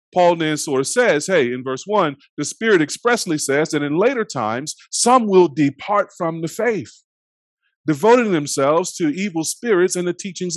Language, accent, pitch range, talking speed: English, American, 145-195 Hz, 165 wpm